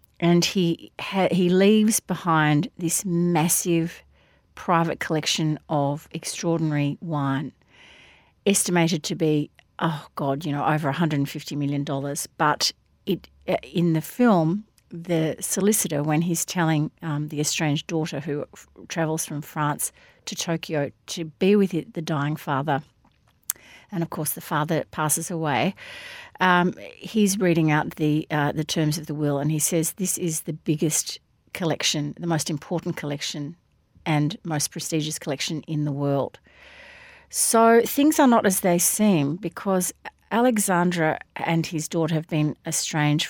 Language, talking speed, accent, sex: English, 145 wpm, Australian, female